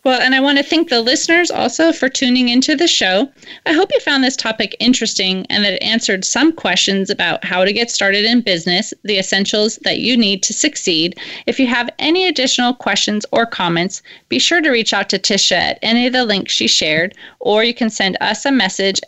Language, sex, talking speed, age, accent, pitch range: English, female, 220 wpm, 30-49, American, 195-270 Hz